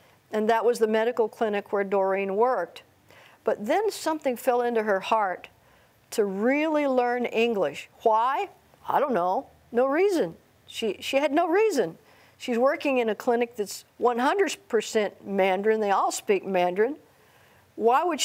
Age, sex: 50-69, female